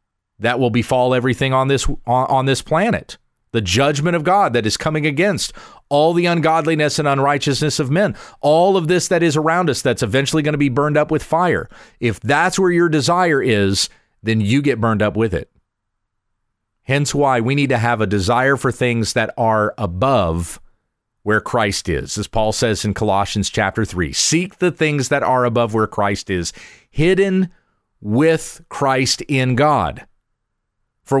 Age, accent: 40-59, American